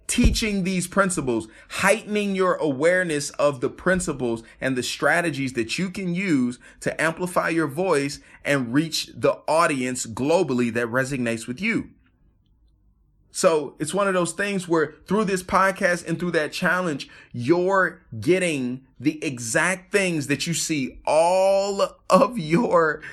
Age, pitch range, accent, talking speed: 30-49, 125-175 Hz, American, 140 wpm